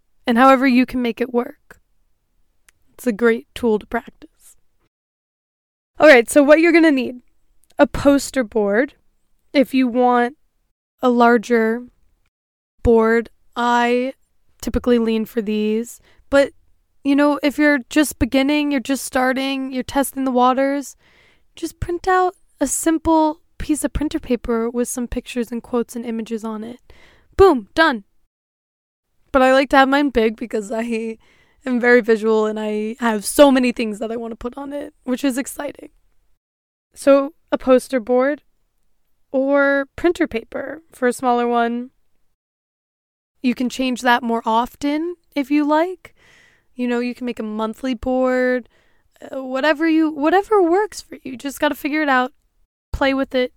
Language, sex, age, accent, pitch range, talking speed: English, female, 20-39, American, 240-285 Hz, 155 wpm